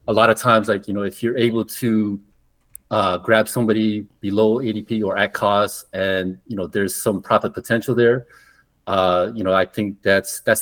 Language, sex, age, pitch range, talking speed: English, male, 30-49, 95-115 Hz, 190 wpm